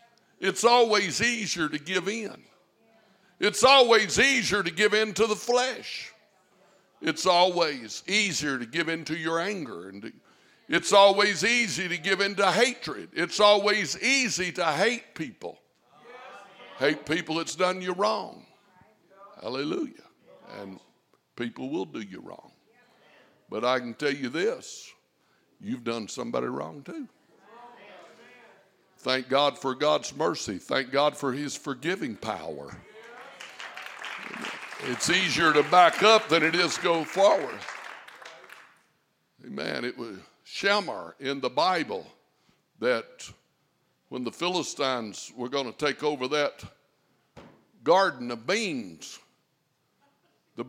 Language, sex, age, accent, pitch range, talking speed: English, male, 60-79, American, 150-215 Hz, 125 wpm